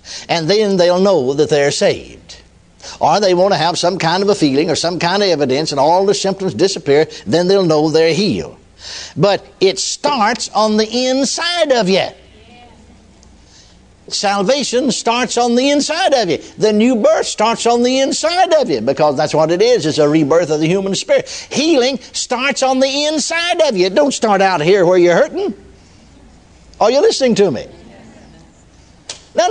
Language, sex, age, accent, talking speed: English, male, 60-79, American, 180 wpm